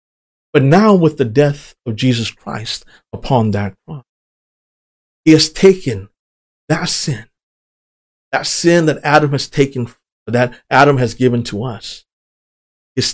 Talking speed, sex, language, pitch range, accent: 130 wpm, male, English, 115-185 Hz, American